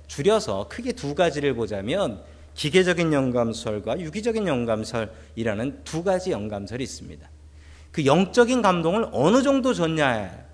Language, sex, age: Korean, male, 40-59